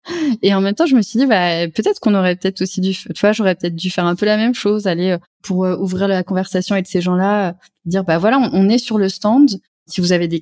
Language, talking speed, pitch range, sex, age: French, 260 wpm, 185-220 Hz, female, 20-39